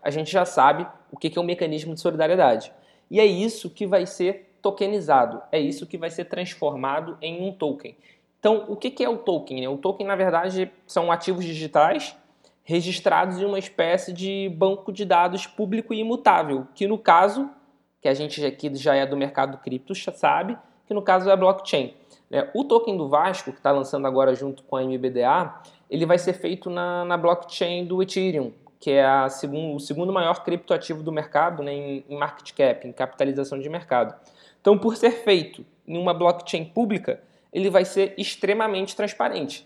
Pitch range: 145-190 Hz